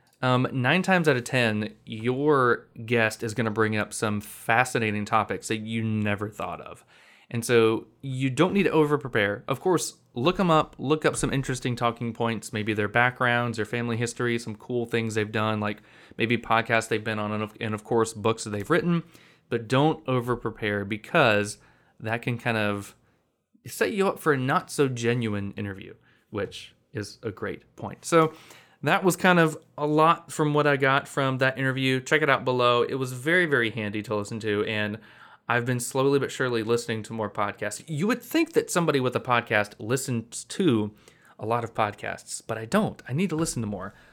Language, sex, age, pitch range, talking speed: English, male, 20-39, 110-135 Hz, 200 wpm